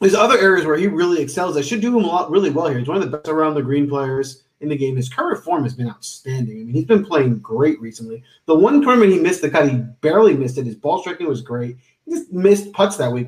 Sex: male